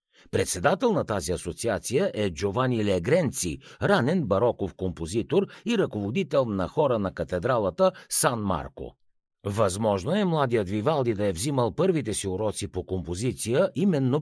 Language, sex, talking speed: Bulgarian, male, 130 wpm